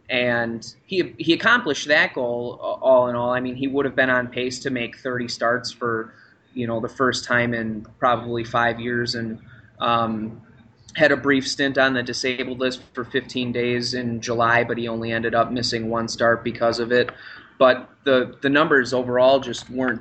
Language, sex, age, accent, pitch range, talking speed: English, male, 20-39, American, 115-130 Hz, 190 wpm